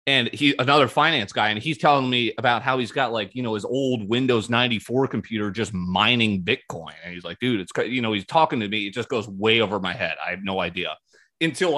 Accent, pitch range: American, 100-135 Hz